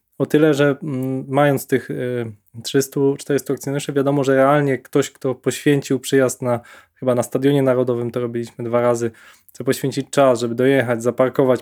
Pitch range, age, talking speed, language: 125-145 Hz, 20-39, 150 wpm, Polish